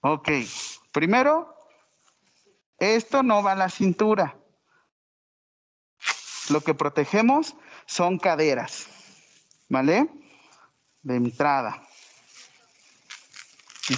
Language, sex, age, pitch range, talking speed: Spanish, male, 40-59, 175-255 Hz, 75 wpm